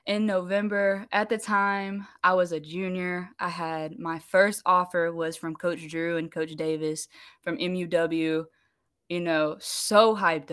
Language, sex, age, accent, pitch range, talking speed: English, female, 20-39, American, 165-190 Hz, 155 wpm